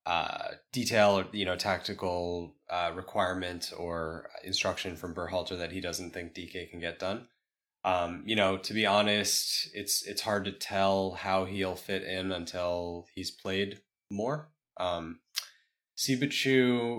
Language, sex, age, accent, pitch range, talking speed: English, male, 20-39, American, 90-105 Hz, 140 wpm